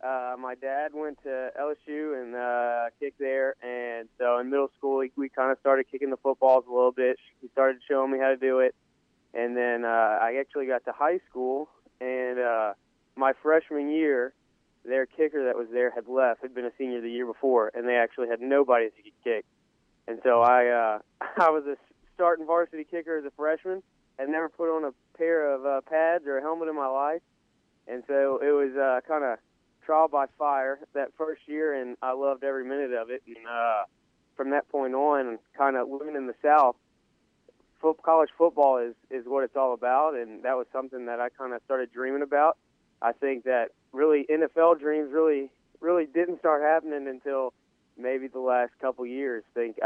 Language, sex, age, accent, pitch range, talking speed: English, male, 20-39, American, 125-145 Hz, 205 wpm